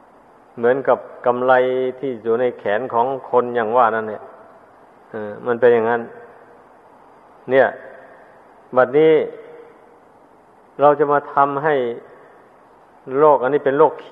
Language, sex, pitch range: Thai, male, 125-150 Hz